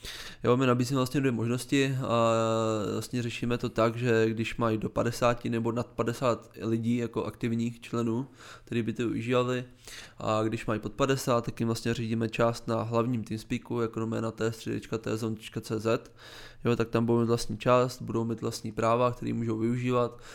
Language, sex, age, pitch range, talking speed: Czech, male, 20-39, 115-120 Hz, 165 wpm